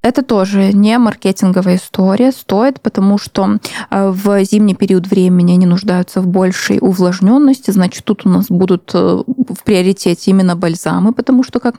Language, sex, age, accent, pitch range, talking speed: Russian, female, 20-39, native, 195-230 Hz, 150 wpm